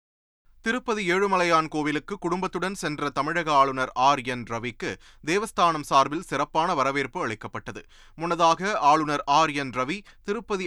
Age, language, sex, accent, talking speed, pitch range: 30-49, Tamil, male, native, 110 wpm, 130-170 Hz